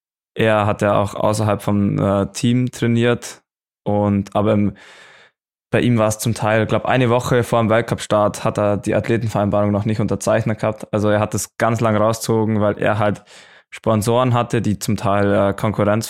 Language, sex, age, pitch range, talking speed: German, male, 20-39, 100-115 Hz, 180 wpm